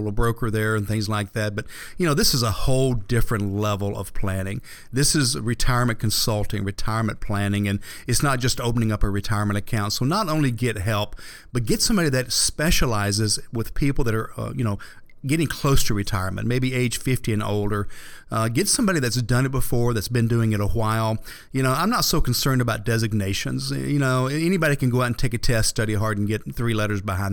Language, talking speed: English, 215 wpm